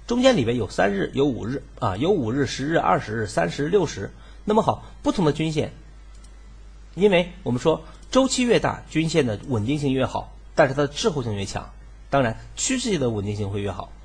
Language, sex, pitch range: Chinese, male, 115-185 Hz